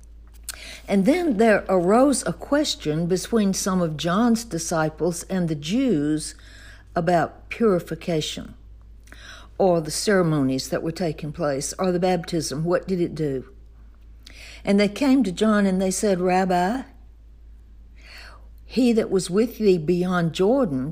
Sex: female